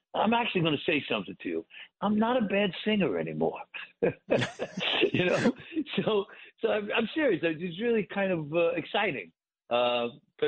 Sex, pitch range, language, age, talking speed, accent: male, 125-210 Hz, English, 60-79, 165 wpm, American